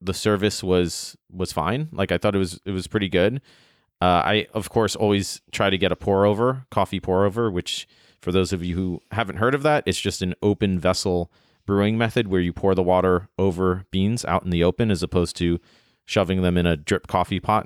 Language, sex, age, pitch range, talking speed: English, male, 30-49, 90-115 Hz, 225 wpm